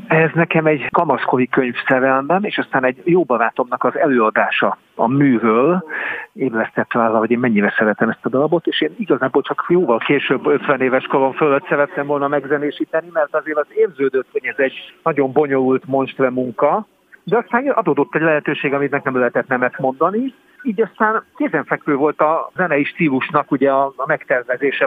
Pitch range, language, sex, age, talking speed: 130-165 Hz, Hungarian, male, 50-69, 160 wpm